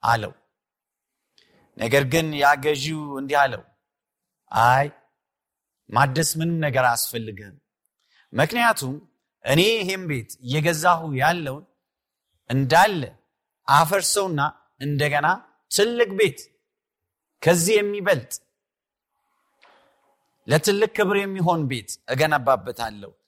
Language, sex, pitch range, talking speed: Amharic, male, 125-170 Hz, 75 wpm